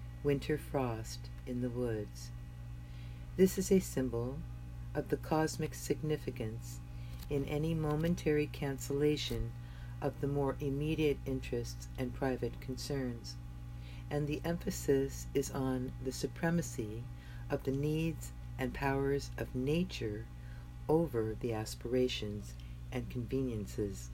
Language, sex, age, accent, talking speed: English, female, 50-69, American, 110 wpm